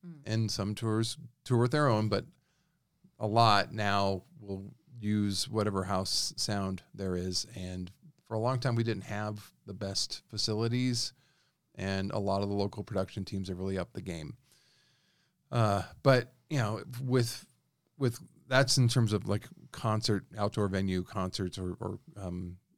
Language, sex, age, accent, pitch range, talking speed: English, male, 40-59, American, 95-120 Hz, 160 wpm